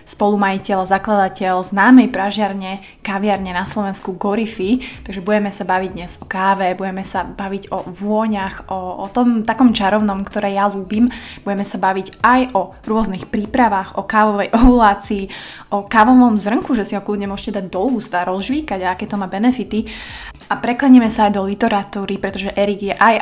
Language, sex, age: Slovak, female, 20-39